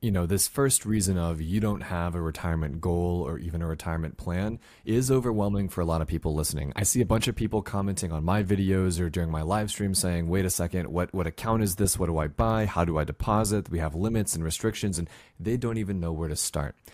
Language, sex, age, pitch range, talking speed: English, male, 30-49, 85-110 Hz, 250 wpm